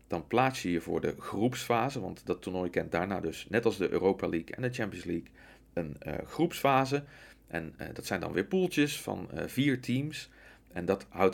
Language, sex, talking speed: Dutch, male, 205 wpm